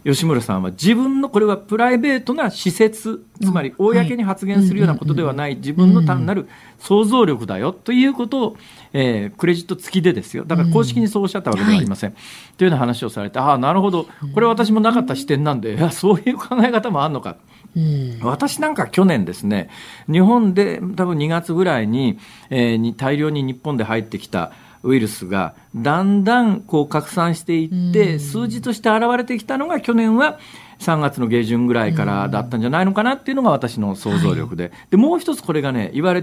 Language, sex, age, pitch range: Japanese, male, 50-69, 135-225 Hz